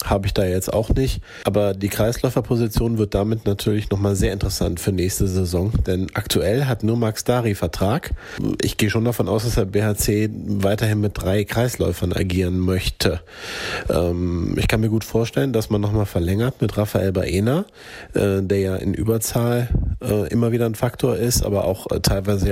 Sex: male